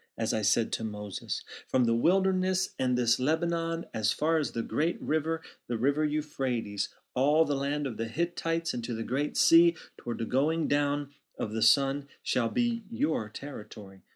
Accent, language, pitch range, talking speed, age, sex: American, English, 125-165 Hz, 180 wpm, 40-59, male